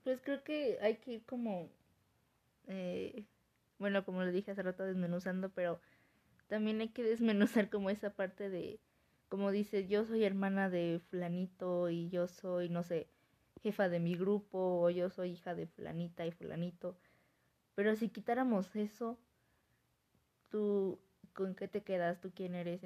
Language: Spanish